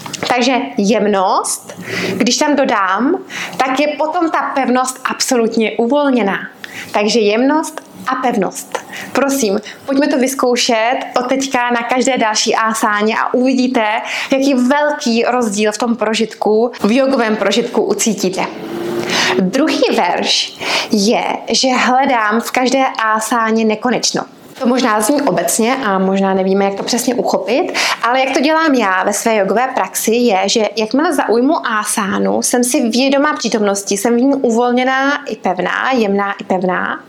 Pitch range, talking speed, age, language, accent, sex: 215-265 Hz, 140 wpm, 20-39, Czech, native, female